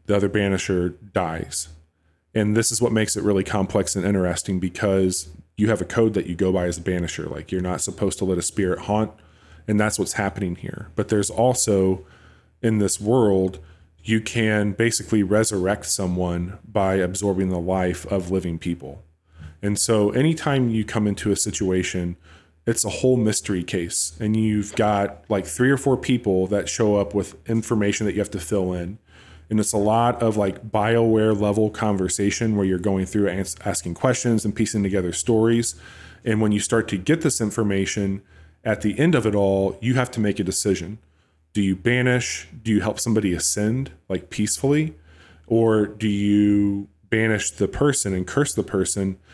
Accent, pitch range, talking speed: American, 95-110 Hz, 180 wpm